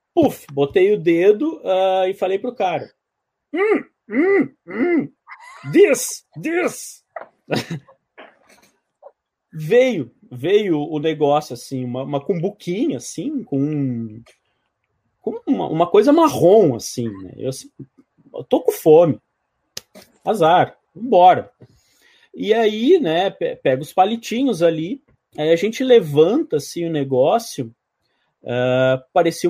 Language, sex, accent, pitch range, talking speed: Portuguese, male, Brazilian, 140-235 Hz, 110 wpm